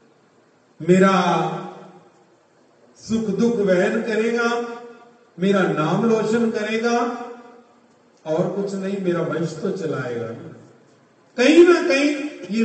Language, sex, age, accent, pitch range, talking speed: Hindi, male, 40-59, native, 180-245 Hz, 95 wpm